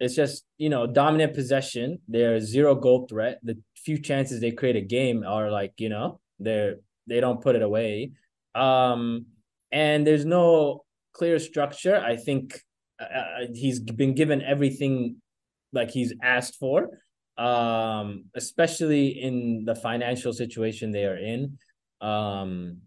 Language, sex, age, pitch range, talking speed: English, male, 20-39, 115-145 Hz, 145 wpm